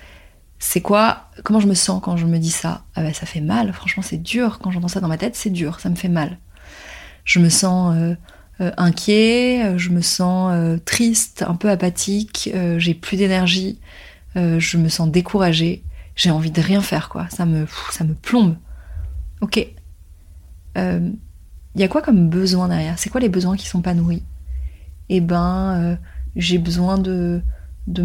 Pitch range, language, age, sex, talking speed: 170-210 Hz, French, 30-49, female, 195 wpm